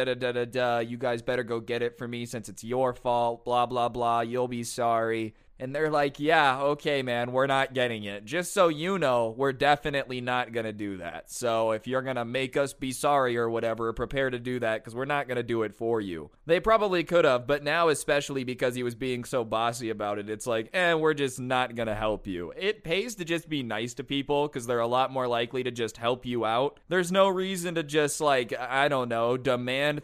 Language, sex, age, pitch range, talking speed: English, male, 20-39, 115-140 Hz, 235 wpm